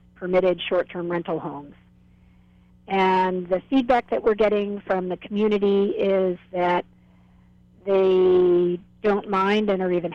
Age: 50-69